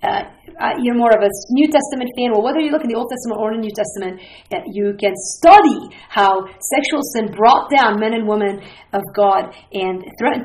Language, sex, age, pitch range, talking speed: English, female, 40-59, 200-260 Hz, 205 wpm